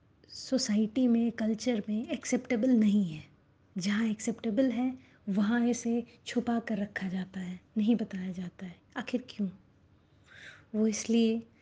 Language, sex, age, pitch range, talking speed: Hindi, female, 20-39, 195-240 Hz, 130 wpm